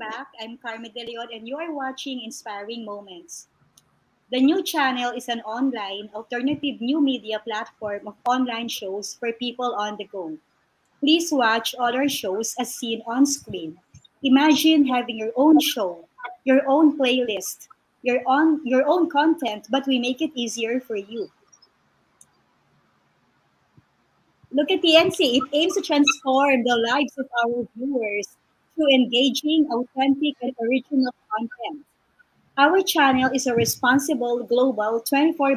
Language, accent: English, Filipino